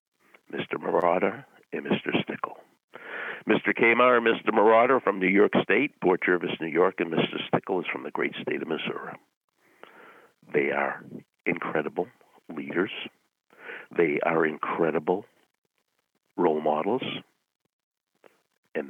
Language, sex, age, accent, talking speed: English, male, 60-79, American, 125 wpm